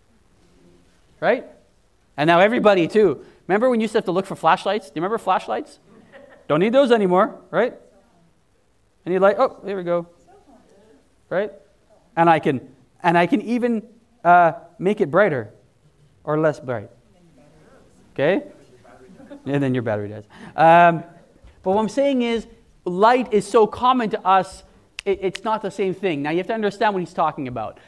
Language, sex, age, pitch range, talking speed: English, male, 30-49, 155-225 Hz, 160 wpm